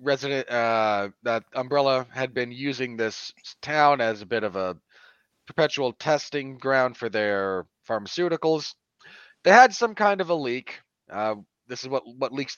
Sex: male